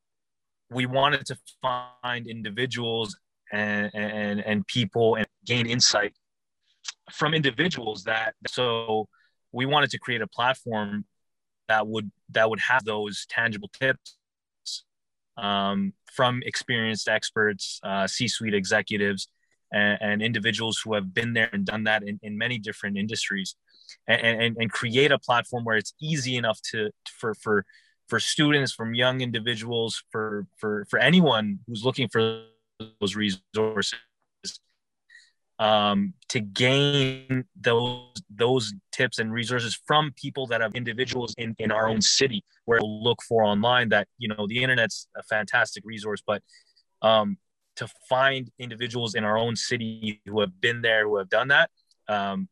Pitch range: 105-125 Hz